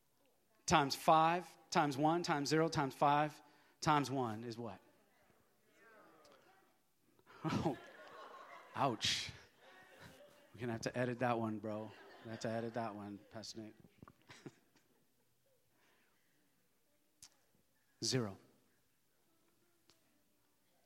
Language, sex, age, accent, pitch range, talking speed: English, male, 40-59, American, 120-155 Hz, 85 wpm